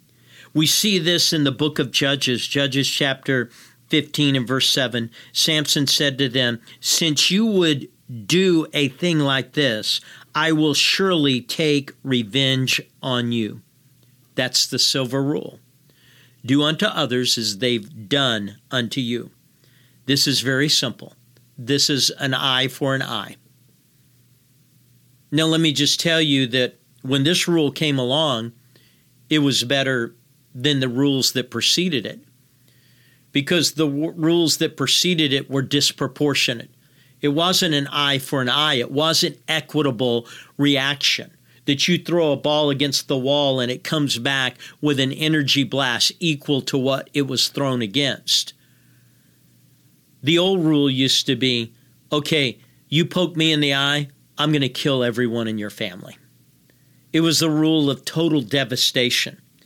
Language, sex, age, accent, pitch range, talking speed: English, male, 50-69, American, 125-150 Hz, 150 wpm